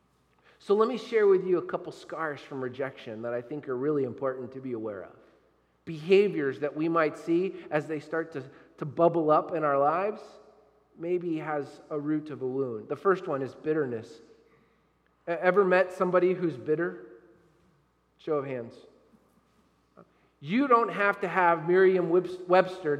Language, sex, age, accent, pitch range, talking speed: English, male, 40-59, American, 145-200 Hz, 160 wpm